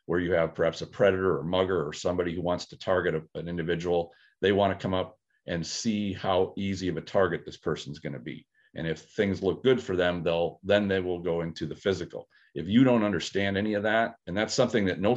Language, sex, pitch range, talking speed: English, male, 85-105 Hz, 235 wpm